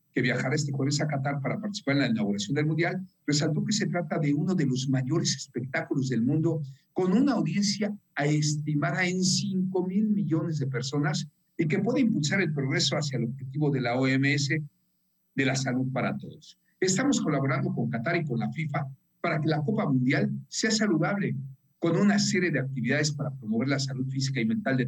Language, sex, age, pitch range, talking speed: Spanish, male, 50-69, 135-175 Hz, 195 wpm